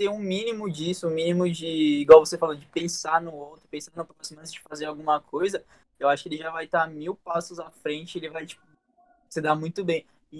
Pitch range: 150-185 Hz